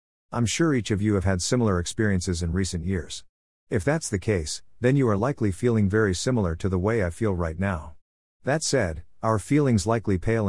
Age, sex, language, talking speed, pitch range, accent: 50-69, male, English, 205 wpm, 90-115 Hz, American